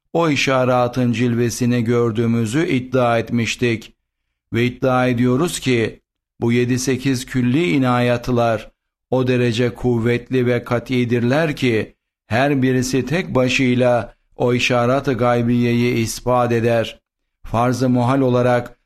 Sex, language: male, Turkish